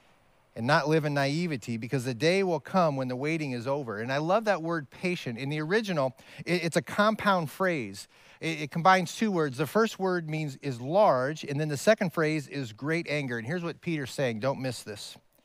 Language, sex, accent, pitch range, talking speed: English, male, American, 130-180 Hz, 210 wpm